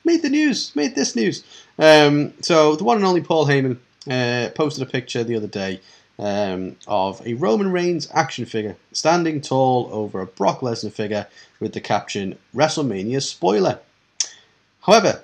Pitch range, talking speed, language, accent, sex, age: 115-165 Hz, 160 wpm, English, British, male, 30-49